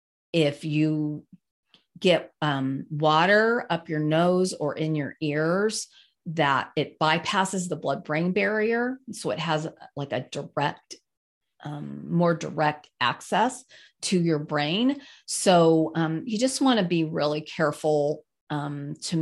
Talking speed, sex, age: 135 wpm, female, 40-59